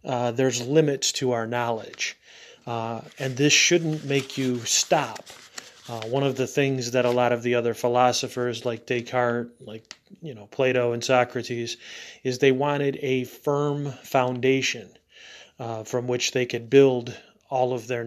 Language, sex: English, male